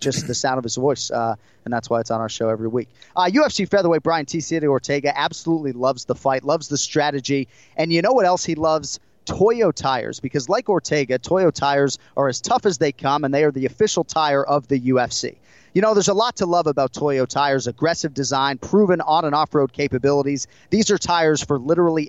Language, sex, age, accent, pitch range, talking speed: English, male, 30-49, American, 130-165 Hz, 220 wpm